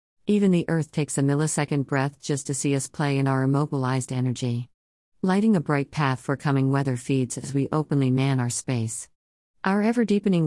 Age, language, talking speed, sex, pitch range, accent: 50-69, English, 185 wpm, female, 130-155 Hz, American